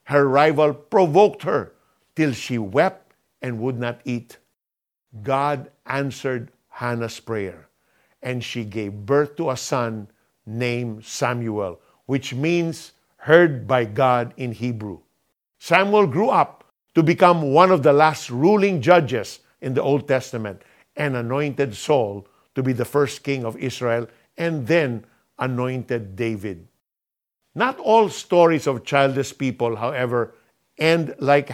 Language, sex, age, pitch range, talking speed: Filipino, male, 50-69, 120-165 Hz, 130 wpm